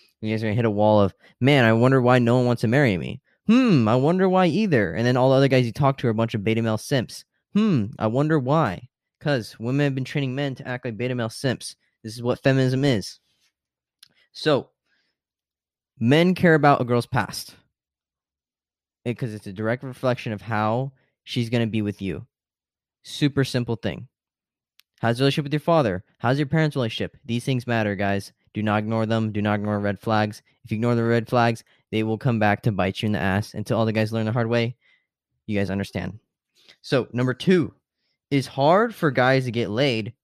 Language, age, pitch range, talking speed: English, 10-29, 105-140 Hz, 215 wpm